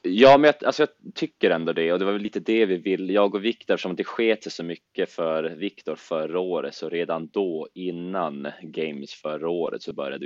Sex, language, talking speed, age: male, Swedish, 215 wpm, 20-39